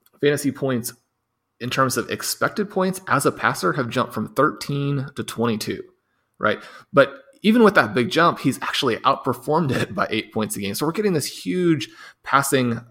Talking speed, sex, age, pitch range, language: 175 wpm, male, 30-49, 110-140 Hz, English